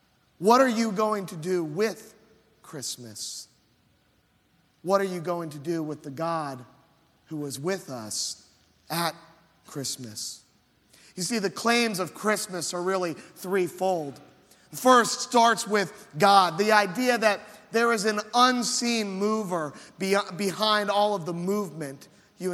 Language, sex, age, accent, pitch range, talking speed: English, male, 30-49, American, 155-215 Hz, 135 wpm